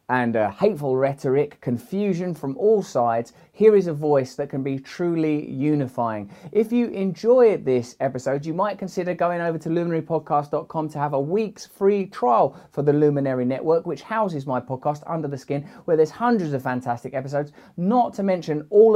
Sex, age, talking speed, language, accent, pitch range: male, 20-39, 175 wpm, English, British, 130-165 Hz